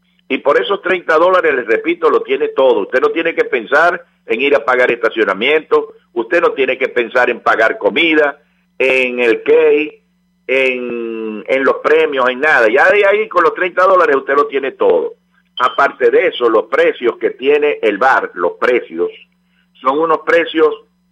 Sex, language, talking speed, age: male, English, 175 wpm, 50-69